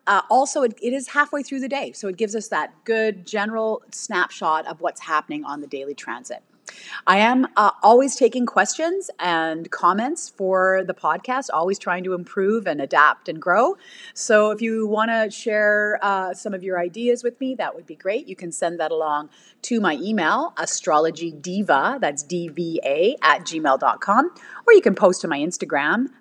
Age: 30-49